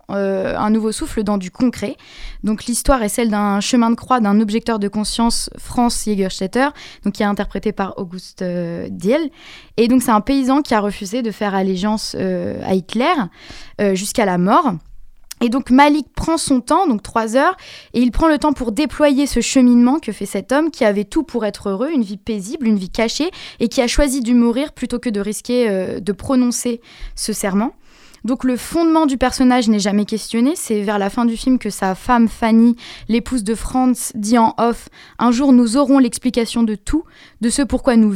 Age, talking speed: 20-39, 205 wpm